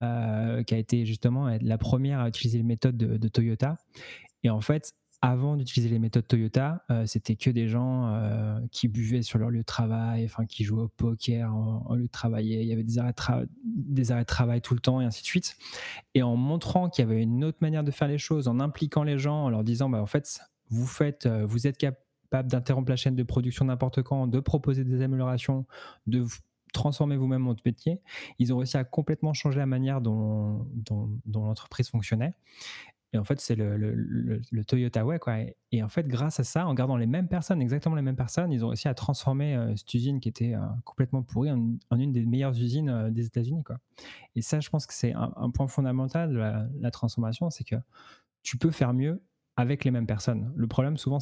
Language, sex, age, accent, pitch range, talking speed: French, male, 20-39, French, 115-135 Hz, 230 wpm